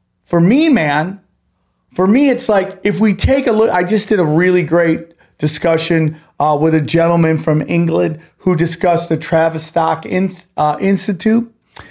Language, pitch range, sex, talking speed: English, 165-210 Hz, male, 160 wpm